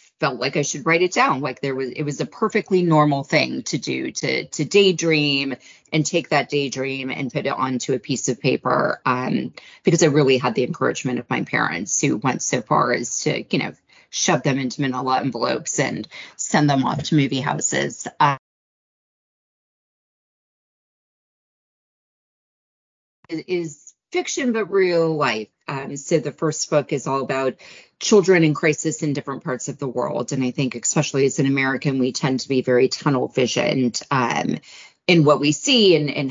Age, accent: 30-49, American